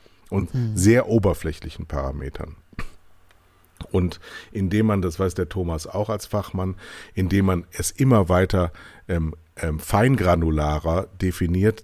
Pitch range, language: 85-110 Hz, German